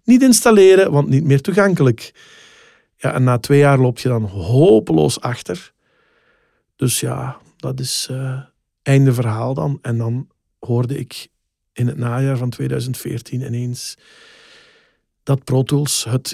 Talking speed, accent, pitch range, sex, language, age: 135 wpm, Dutch, 125-155 Hz, male, Dutch, 50-69